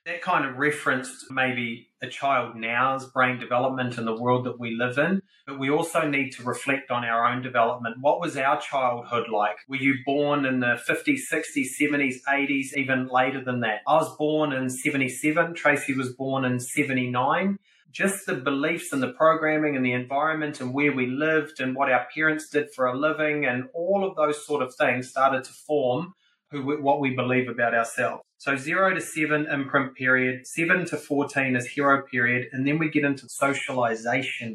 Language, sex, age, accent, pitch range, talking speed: English, male, 30-49, Australian, 125-150 Hz, 195 wpm